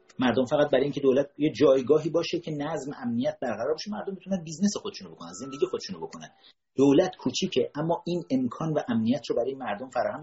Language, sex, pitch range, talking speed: Persian, male, 125-205 Hz, 195 wpm